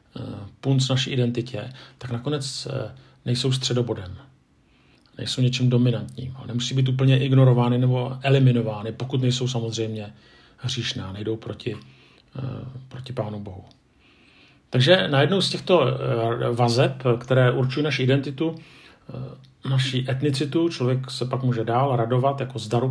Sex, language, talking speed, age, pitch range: male, Czech, 120 wpm, 50-69, 115-135 Hz